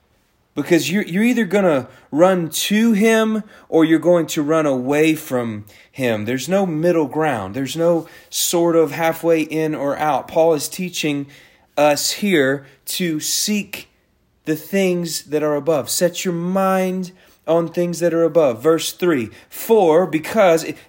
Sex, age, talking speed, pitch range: male, 30-49, 150 wpm, 140-185 Hz